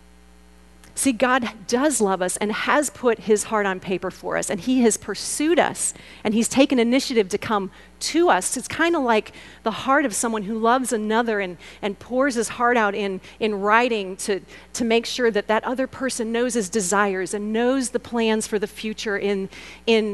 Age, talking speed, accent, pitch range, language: 40-59, 200 wpm, American, 195-240 Hz, English